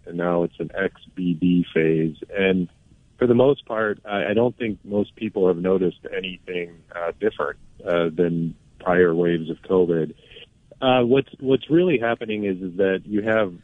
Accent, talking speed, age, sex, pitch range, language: American, 165 wpm, 40-59, male, 85-105 Hz, English